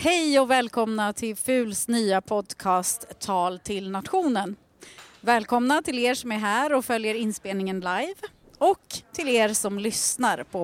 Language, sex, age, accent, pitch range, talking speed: Swedish, female, 30-49, native, 195-245 Hz, 145 wpm